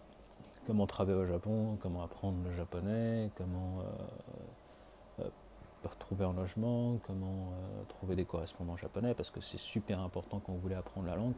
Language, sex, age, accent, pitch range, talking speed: French, male, 30-49, French, 90-110 Hz, 165 wpm